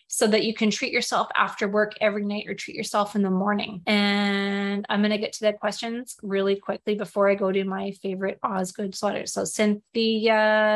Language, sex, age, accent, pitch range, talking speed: English, female, 30-49, American, 205-235 Hz, 200 wpm